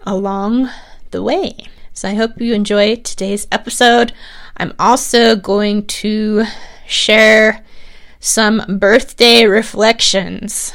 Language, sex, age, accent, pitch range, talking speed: English, female, 20-39, American, 190-230 Hz, 100 wpm